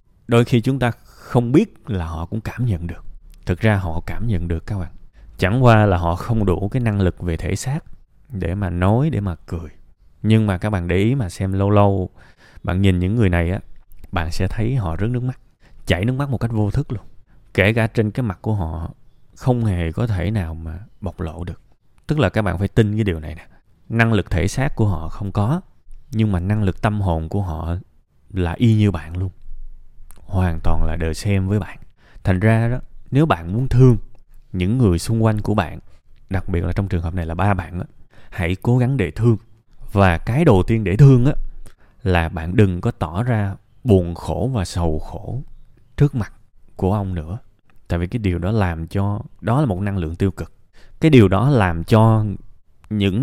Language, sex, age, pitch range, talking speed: Vietnamese, male, 20-39, 90-115 Hz, 220 wpm